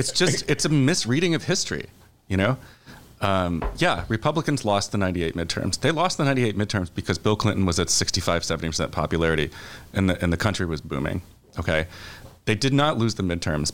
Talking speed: 185 wpm